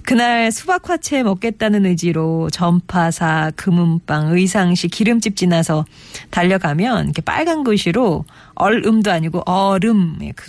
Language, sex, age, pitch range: Korean, female, 40-59, 165-225 Hz